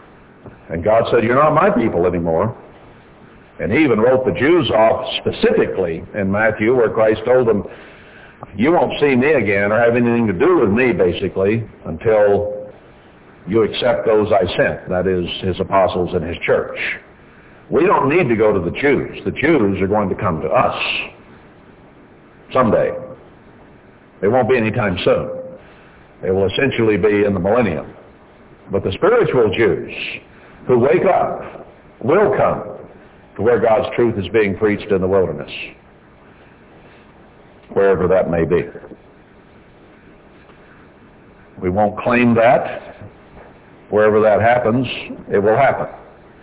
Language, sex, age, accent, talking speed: English, male, 60-79, American, 145 wpm